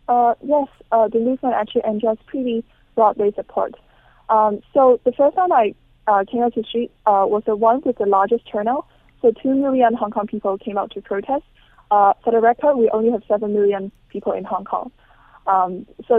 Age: 20-39